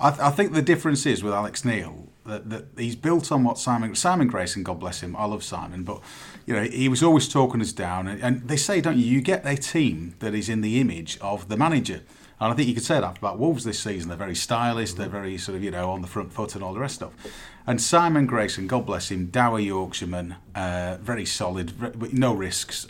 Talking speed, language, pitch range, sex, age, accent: 250 wpm, English, 95-125 Hz, male, 30-49, British